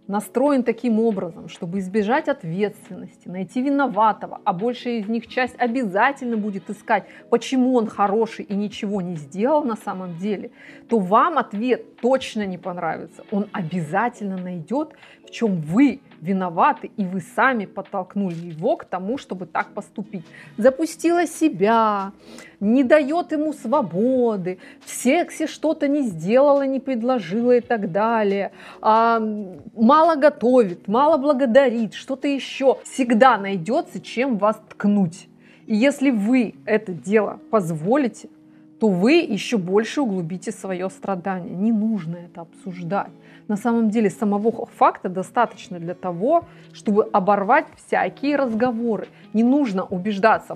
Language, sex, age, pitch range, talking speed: Russian, female, 30-49, 195-255 Hz, 130 wpm